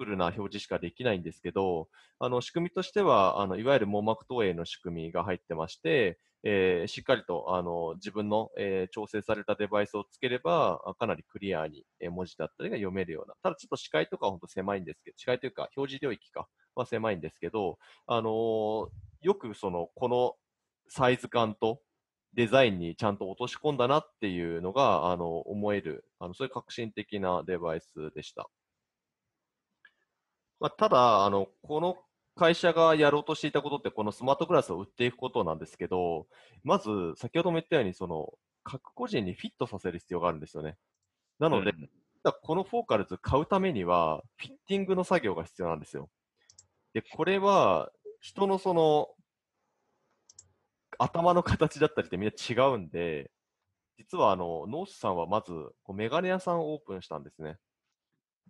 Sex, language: male, Japanese